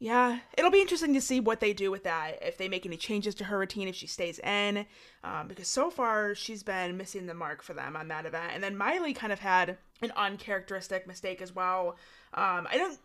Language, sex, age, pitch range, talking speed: English, female, 20-39, 180-245 Hz, 235 wpm